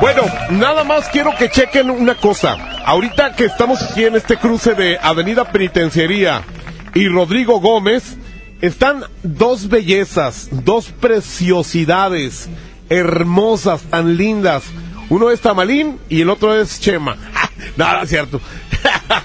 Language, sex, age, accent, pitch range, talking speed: Spanish, male, 40-59, Mexican, 175-230 Hz, 130 wpm